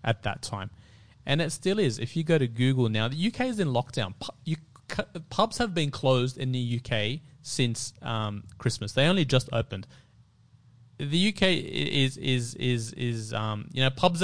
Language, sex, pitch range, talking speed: English, male, 110-135 Hz, 190 wpm